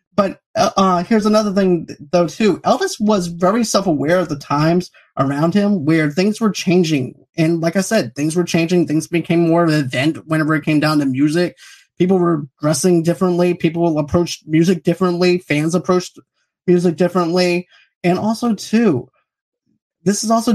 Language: English